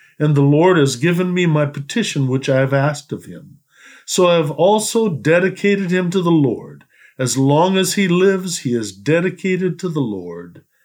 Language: English